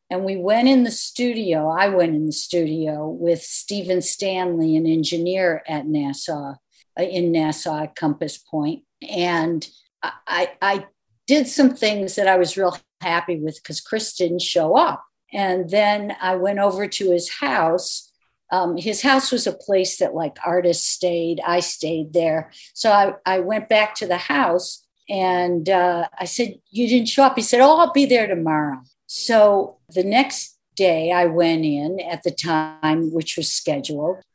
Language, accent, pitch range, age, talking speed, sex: English, American, 165-200 Hz, 60-79, 170 wpm, female